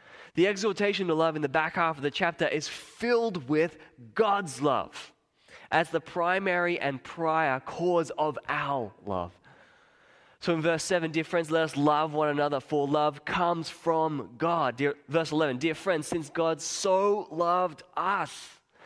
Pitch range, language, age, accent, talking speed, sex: 130-175 Hz, English, 20-39, Australian, 160 wpm, male